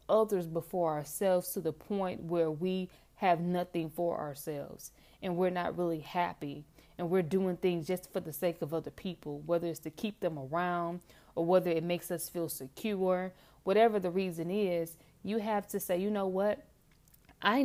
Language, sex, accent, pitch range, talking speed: English, female, American, 165-200 Hz, 180 wpm